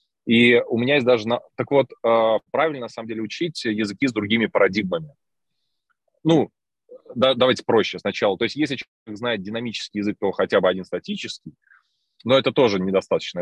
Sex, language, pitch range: male, Russian, 100-125 Hz